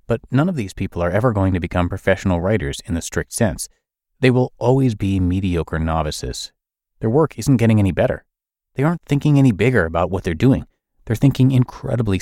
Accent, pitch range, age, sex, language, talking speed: American, 90-125 Hz, 30-49, male, English, 195 wpm